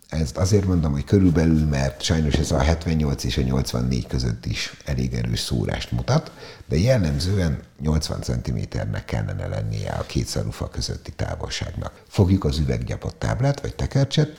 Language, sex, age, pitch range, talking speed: Hungarian, male, 60-79, 70-110 Hz, 140 wpm